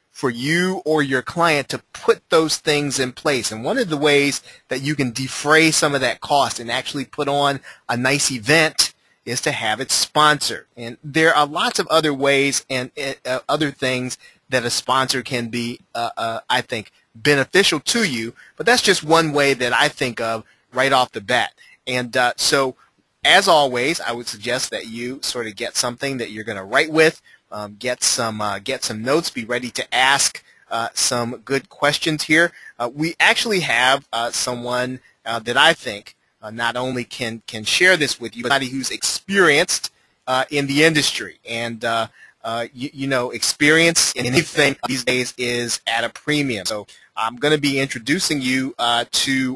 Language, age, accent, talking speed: English, 30-49, American, 195 wpm